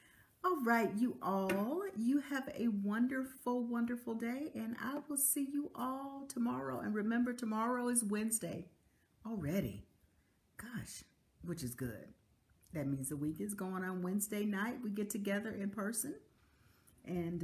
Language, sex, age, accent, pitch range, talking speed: English, female, 50-69, American, 160-235 Hz, 145 wpm